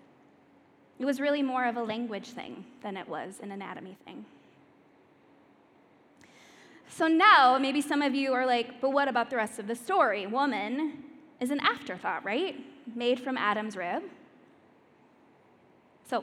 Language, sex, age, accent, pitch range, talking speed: English, female, 10-29, American, 230-290 Hz, 150 wpm